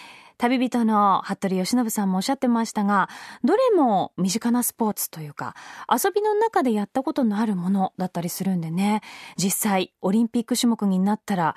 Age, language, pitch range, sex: 20-39, Japanese, 195-270 Hz, female